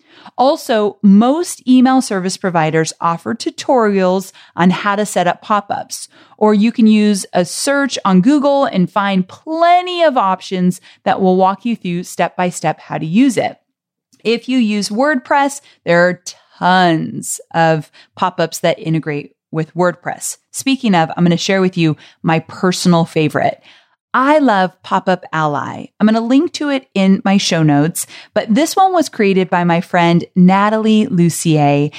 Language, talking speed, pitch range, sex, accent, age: English, 160 wpm, 175-240 Hz, female, American, 30-49